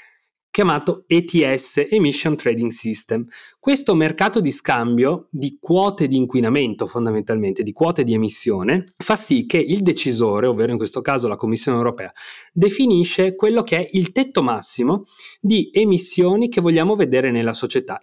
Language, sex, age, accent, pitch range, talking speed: Italian, male, 30-49, native, 125-195 Hz, 145 wpm